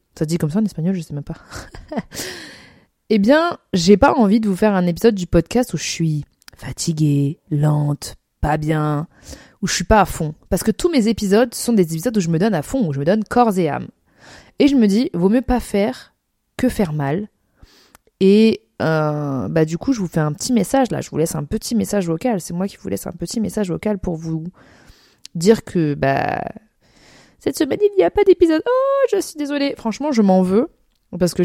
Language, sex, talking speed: French, female, 225 wpm